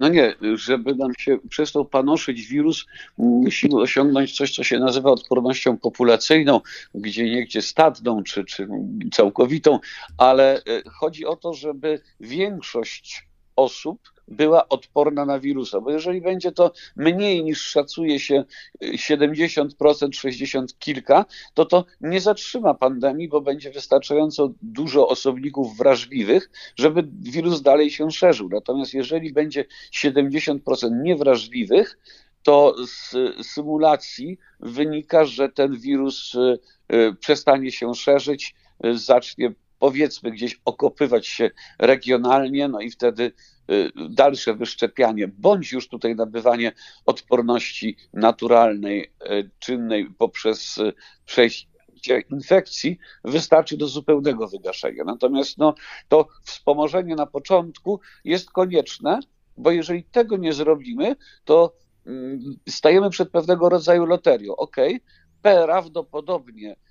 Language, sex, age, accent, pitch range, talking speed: Polish, male, 50-69, native, 130-175 Hz, 110 wpm